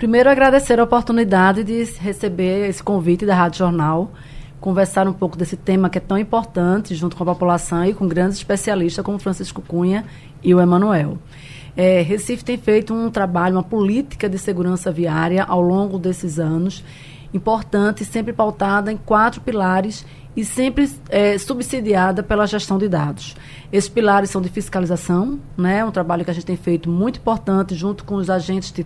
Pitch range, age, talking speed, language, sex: 180-210 Hz, 20-39, 170 wpm, Portuguese, female